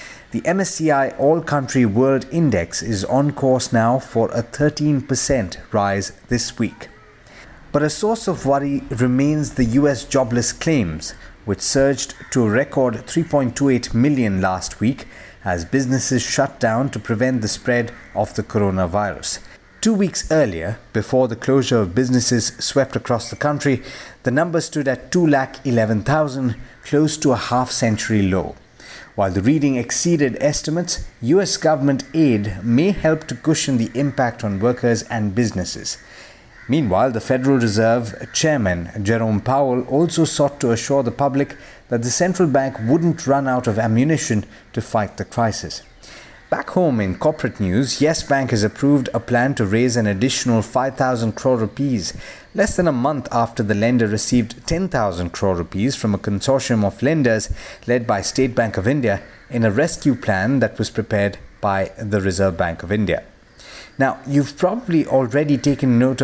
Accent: Indian